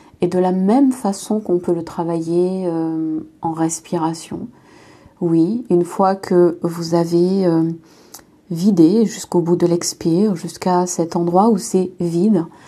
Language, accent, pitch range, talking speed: French, French, 170-190 Hz, 140 wpm